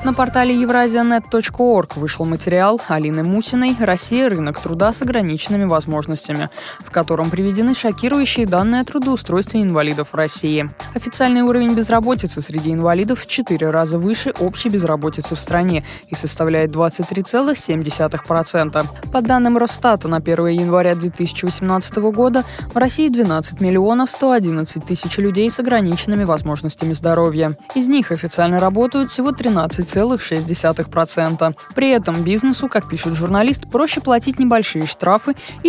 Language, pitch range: Russian, 165-235 Hz